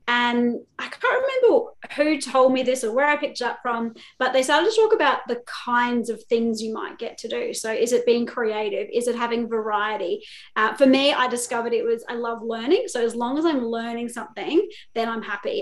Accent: Australian